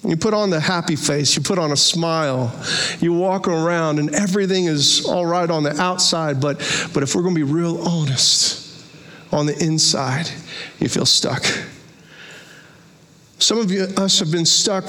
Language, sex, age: English, male, 50-69